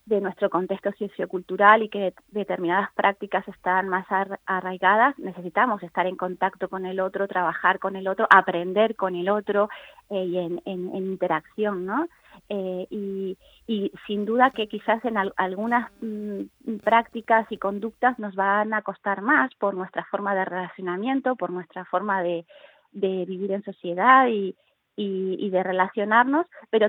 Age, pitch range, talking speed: 30-49, 185-215 Hz, 155 wpm